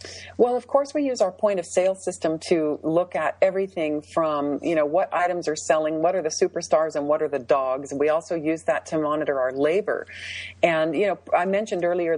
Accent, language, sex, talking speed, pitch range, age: American, English, female, 215 wpm, 145-175 Hz, 40-59